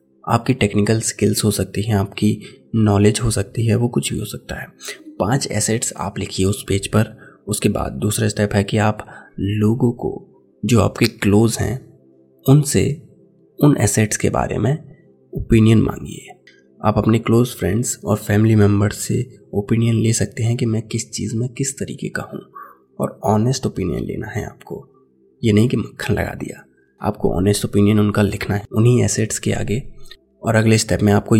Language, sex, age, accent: Hindi, male, 20-39, native